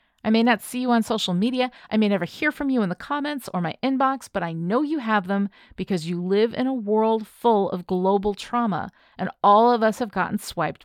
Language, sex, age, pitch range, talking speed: English, female, 40-59, 195-255 Hz, 240 wpm